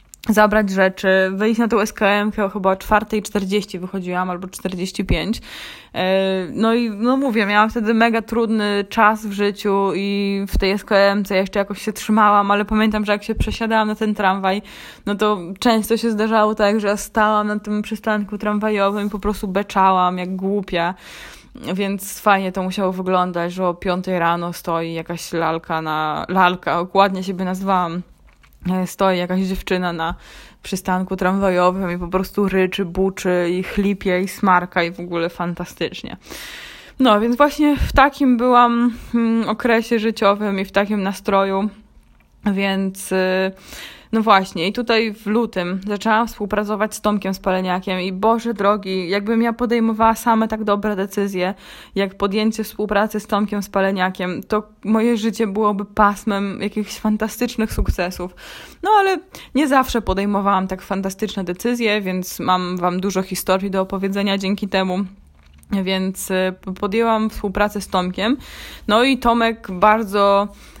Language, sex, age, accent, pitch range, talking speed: Polish, female, 20-39, native, 185-215 Hz, 145 wpm